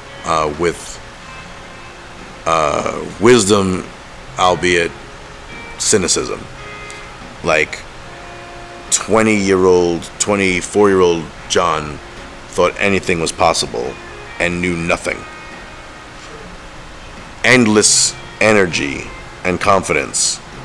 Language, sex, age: English, male, 30-49